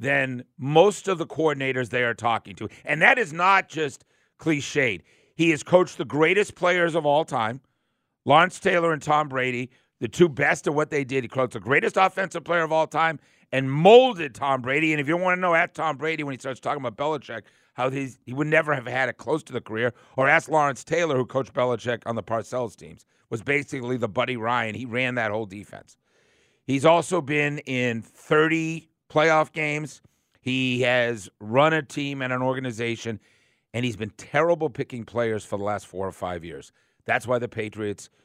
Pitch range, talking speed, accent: 125-165 Hz, 200 wpm, American